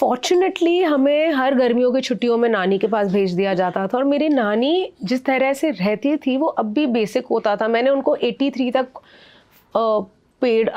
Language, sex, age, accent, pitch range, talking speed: Hindi, female, 30-49, native, 210-265 Hz, 190 wpm